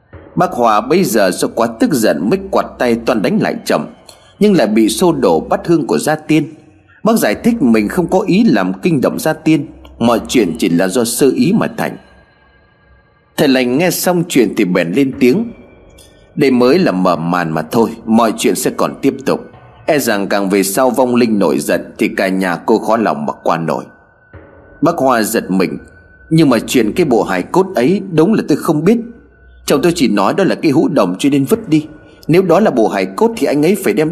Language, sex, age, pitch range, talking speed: Vietnamese, male, 30-49, 110-180 Hz, 225 wpm